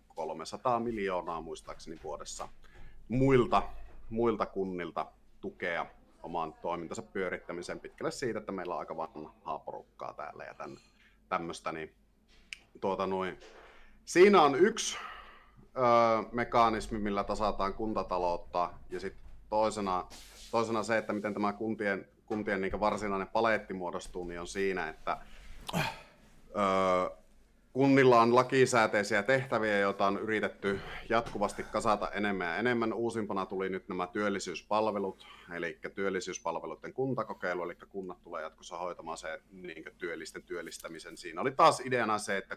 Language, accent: Finnish, native